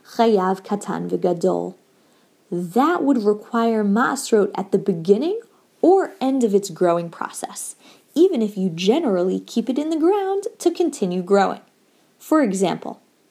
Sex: female